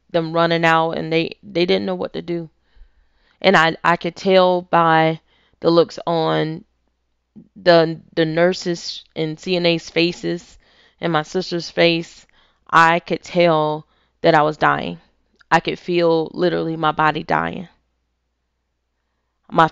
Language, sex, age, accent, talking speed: English, female, 10-29, American, 135 wpm